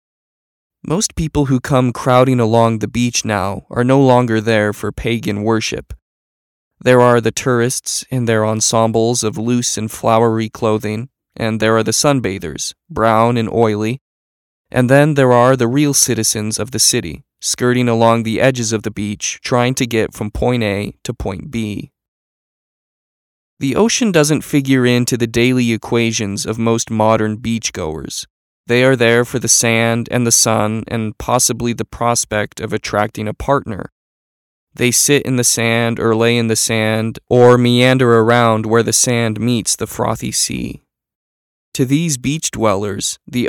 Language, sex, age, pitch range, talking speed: English, male, 20-39, 110-125 Hz, 160 wpm